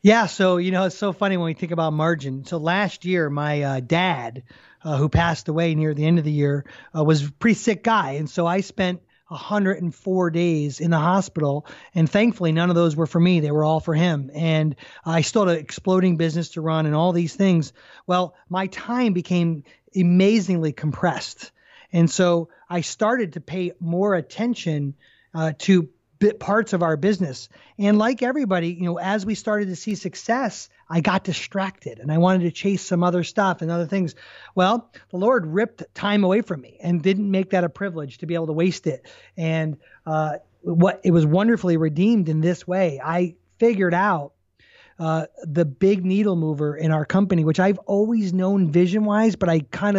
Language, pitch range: English, 160-195 Hz